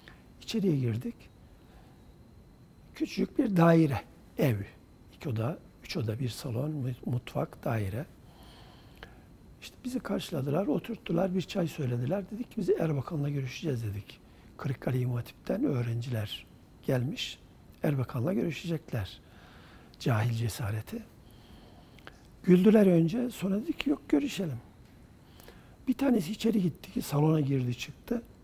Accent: native